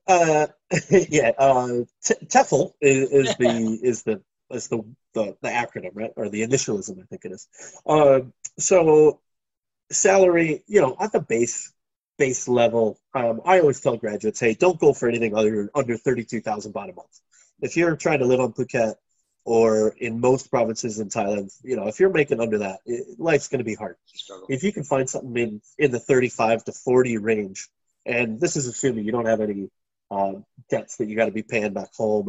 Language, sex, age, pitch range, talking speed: English, male, 30-49, 110-140 Hz, 205 wpm